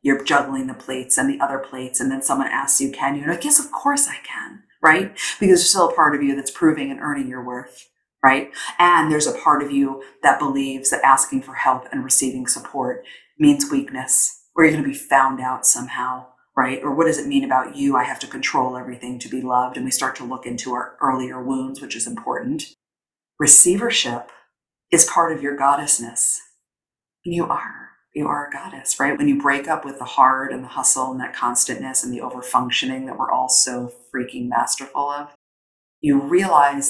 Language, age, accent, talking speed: English, 40-59, American, 210 wpm